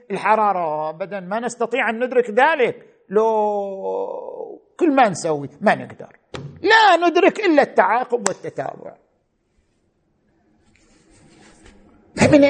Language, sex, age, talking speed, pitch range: Arabic, male, 50-69, 90 wpm, 190-240 Hz